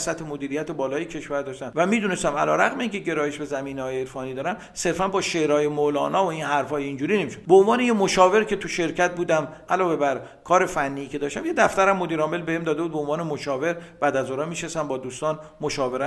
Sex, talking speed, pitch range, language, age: male, 205 wpm, 145-185 Hz, Persian, 50-69